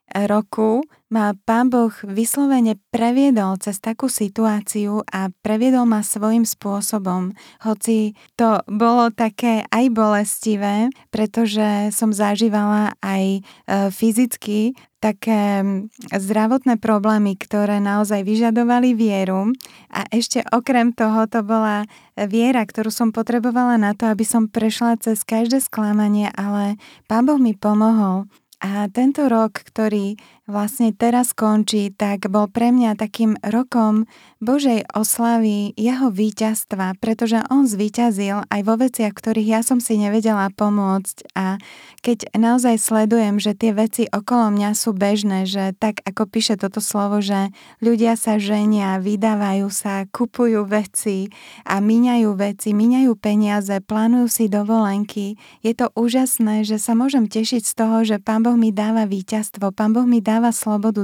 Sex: female